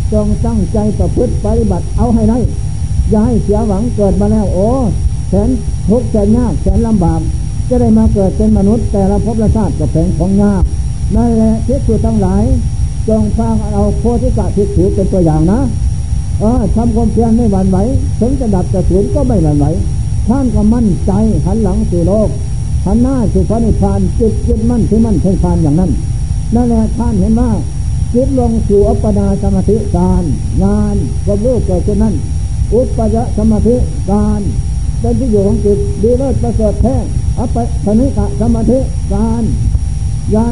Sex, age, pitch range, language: male, 60-79, 100-115 Hz, Thai